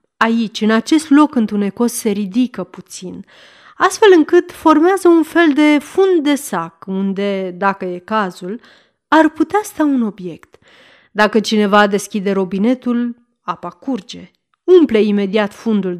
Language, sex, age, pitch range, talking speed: Romanian, female, 30-49, 200-285 Hz, 130 wpm